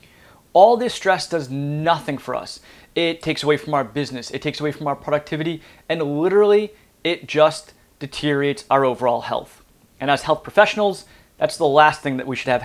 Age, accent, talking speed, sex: 20-39, American, 185 wpm, male